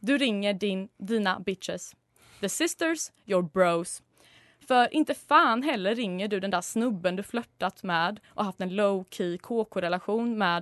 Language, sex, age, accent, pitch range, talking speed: Swedish, female, 20-39, native, 190-235 Hz, 155 wpm